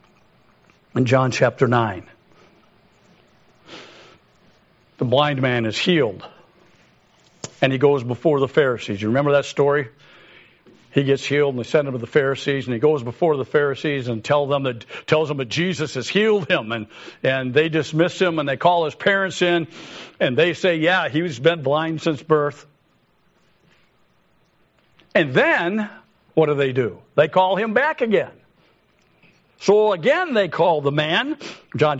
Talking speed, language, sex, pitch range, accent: 150 wpm, English, male, 140-200 Hz, American